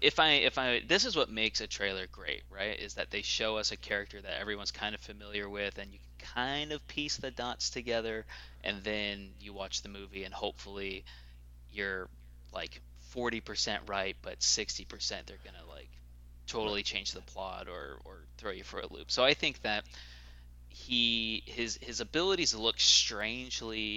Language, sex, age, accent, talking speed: English, male, 20-39, American, 180 wpm